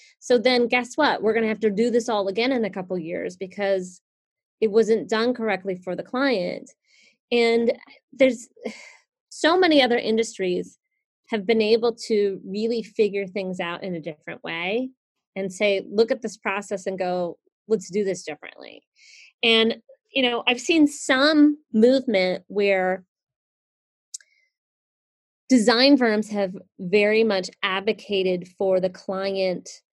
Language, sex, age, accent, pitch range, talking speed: English, female, 30-49, American, 195-250 Hz, 145 wpm